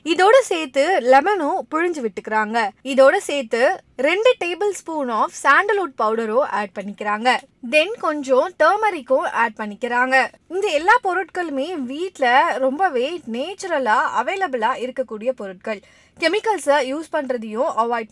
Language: Tamil